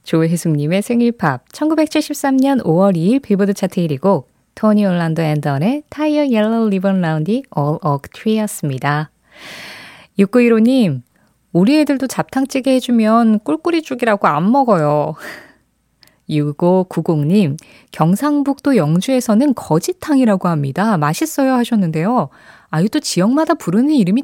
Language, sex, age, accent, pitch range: Korean, female, 20-39, native, 170-245 Hz